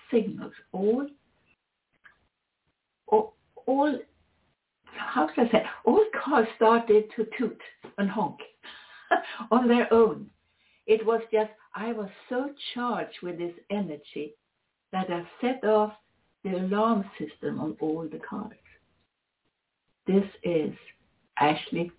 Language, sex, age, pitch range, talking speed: English, female, 60-79, 180-235 Hz, 110 wpm